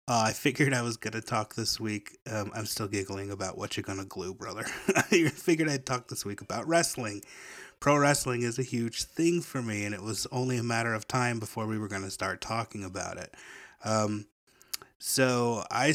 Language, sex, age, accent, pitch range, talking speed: English, male, 30-49, American, 105-130 Hz, 215 wpm